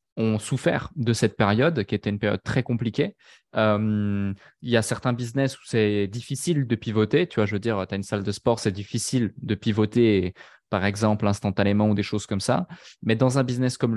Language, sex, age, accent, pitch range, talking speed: French, male, 20-39, French, 105-130 Hz, 220 wpm